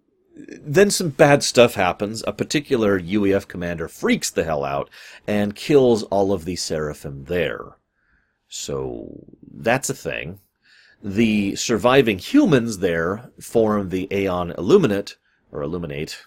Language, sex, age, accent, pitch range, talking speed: English, male, 30-49, American, 95-130 Hz, 125 wpm